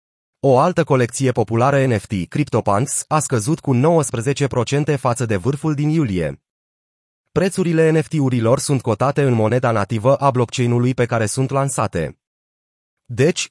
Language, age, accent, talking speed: Romanian, 30-49, native, 130 wpm